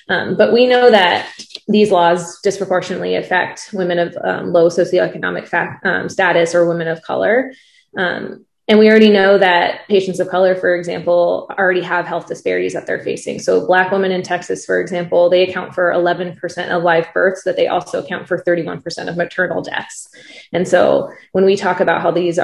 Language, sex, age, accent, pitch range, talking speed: English, female, 20-39, American, 175-190 Hz, 180 wpm